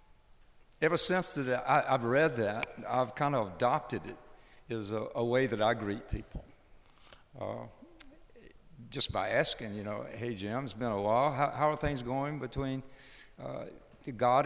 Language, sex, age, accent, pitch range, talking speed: English, male, 60-79, American, 115-145 Hz, 150 wpm